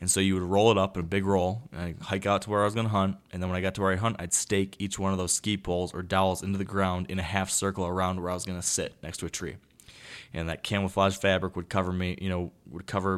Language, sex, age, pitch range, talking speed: English, male, 20-39, 90-100 Hz, 310 wpm